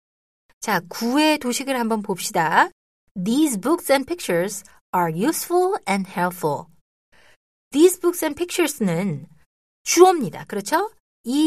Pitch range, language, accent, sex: 180-295 Hz, Korean, native, female